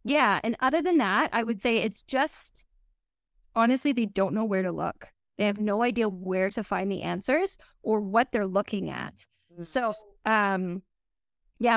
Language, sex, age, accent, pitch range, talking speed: English, female, 20-39, American, 195-235 Hz, 175 wpm